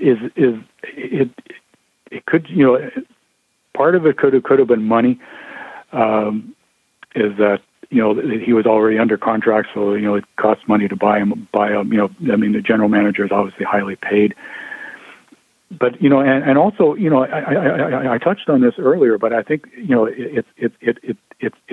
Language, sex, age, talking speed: English, male, 60-79, 205 wpm